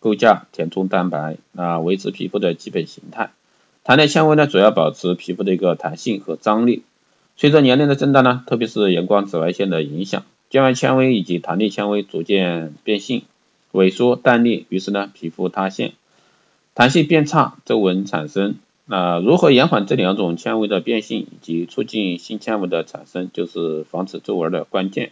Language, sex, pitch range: Chinese, male, 90-120 Hz